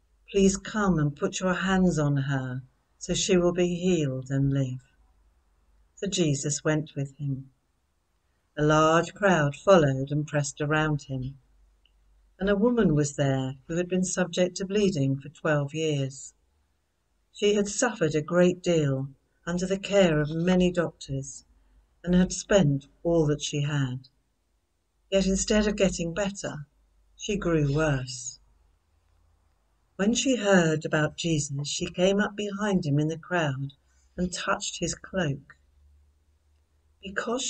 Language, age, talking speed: English, 60-79, 140 wpm